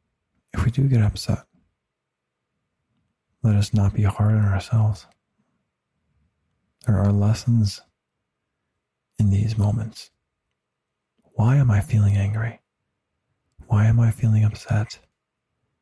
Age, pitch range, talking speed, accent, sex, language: 40-59, 100-115 Hz, 105 wpm, American, male, English